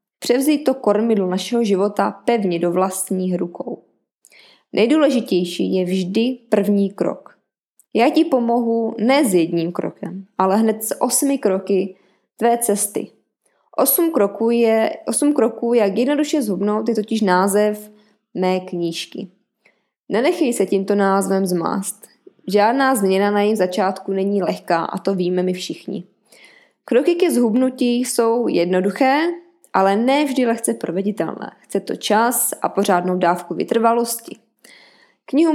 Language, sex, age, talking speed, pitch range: Czech, female, 20-39, 130 wpm, 190-240 Hz